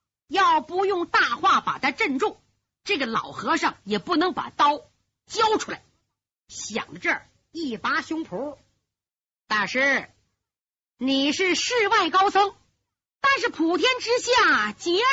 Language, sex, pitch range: Chinese, female, 245-390 Hz